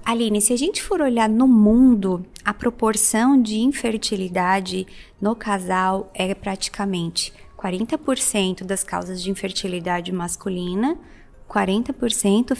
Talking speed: 110 wpm